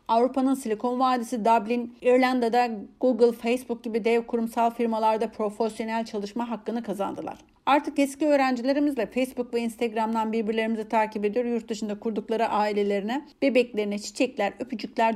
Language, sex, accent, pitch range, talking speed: Turkish, female, native, 225-260 Hz, 125 wpm